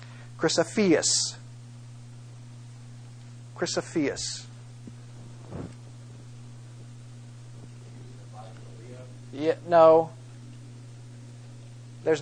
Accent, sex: American, male